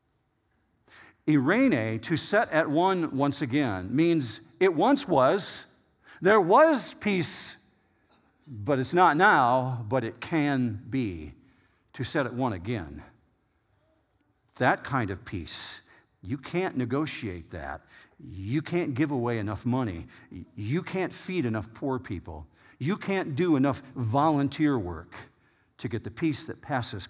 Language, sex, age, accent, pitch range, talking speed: English, male, 50-69, American, 115-160 Hz, 130 wpm